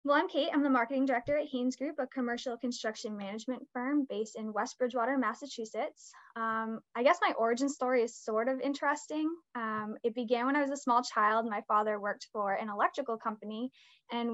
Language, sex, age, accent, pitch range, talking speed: English, female, 10-29, American, 215-260 Hz, 195 wpm